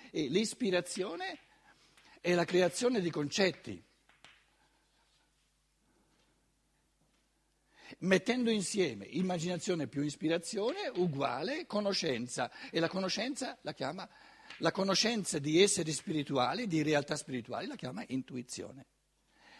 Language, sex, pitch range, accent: Italian, male, 150-200 Hz, native